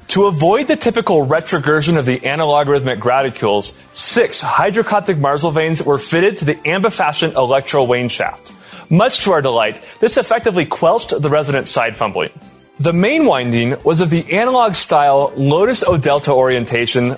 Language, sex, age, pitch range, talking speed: English, male, 20-39, 145-200 Hz, 145 wpm